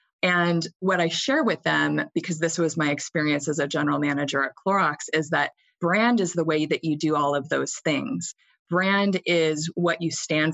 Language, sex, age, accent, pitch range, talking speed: English, female, 30-49, American, 150-180 Hz, 200 wpm